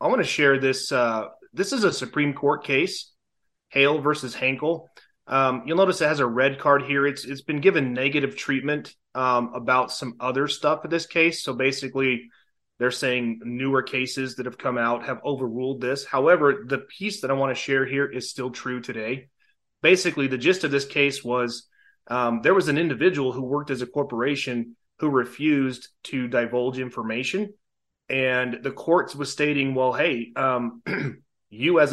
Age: 30-49